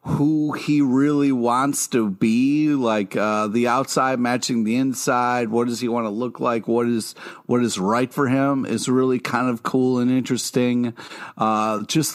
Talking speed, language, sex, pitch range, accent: 180 wpm, English, male, 120-145 Hz, American